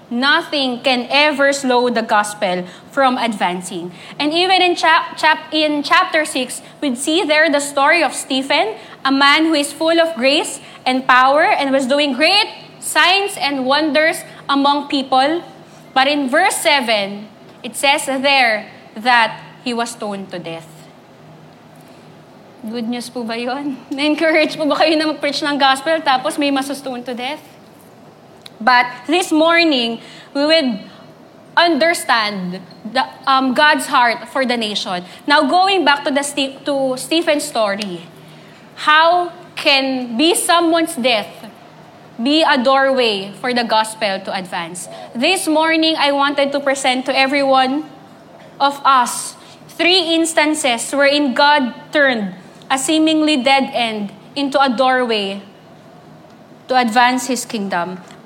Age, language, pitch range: 20-39, English, 245-310 Hz